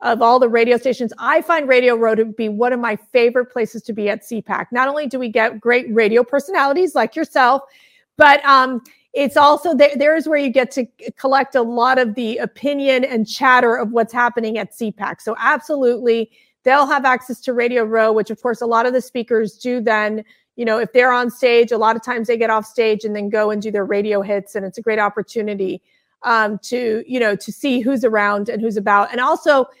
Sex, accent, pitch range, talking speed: female, American, 220-260 Hz, 225 wpm